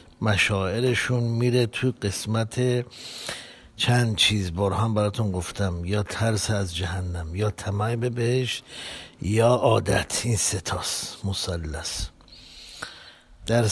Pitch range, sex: 100-120 Hz, male